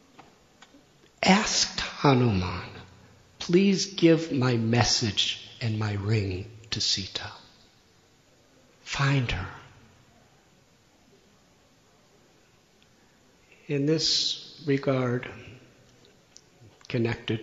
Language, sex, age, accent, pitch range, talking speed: English, male, 50-69, American, 110-155 Hz, 60 wpm